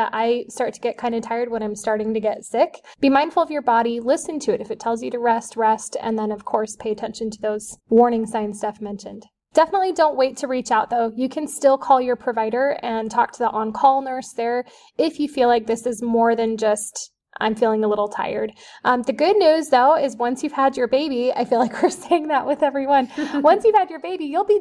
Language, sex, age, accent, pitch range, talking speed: English, female, 20-39, American, 230-285 Hz, 245 wpm